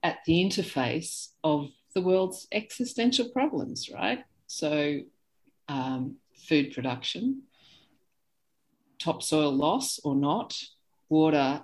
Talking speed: 95 wpm